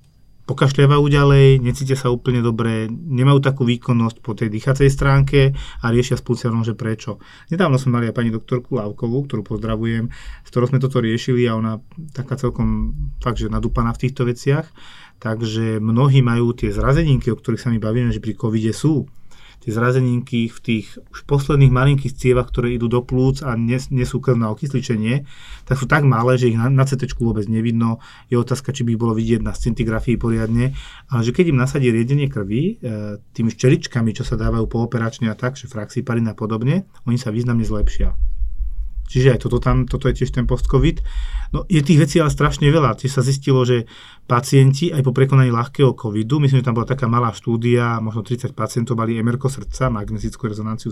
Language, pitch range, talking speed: Slovak, 115-130 Hz, 190 wpm